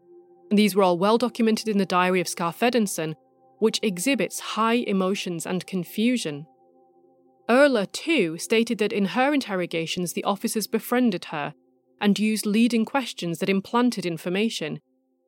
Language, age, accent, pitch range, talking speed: English, 30-49, British, 165-230 Hz, 135 wpm